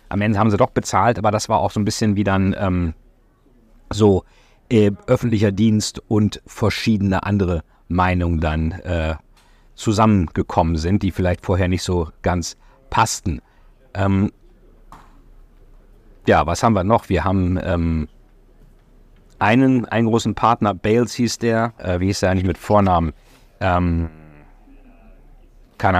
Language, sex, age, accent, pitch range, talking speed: German, male, 50-69, German, 90-110 Hz, 140 wpm